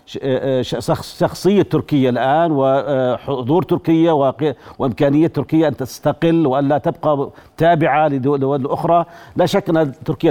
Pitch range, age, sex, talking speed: 135-160 Hz, 50-69, male, 105 wpm